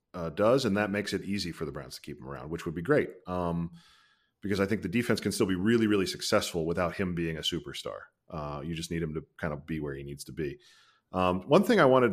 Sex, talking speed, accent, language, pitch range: male, 265 wpm, American, English, 90-115 Hz